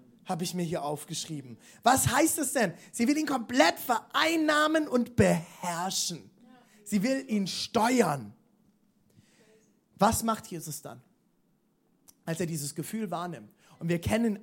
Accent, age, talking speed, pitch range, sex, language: German, 30-49, 135 wpm, 180-250 Hz, male, German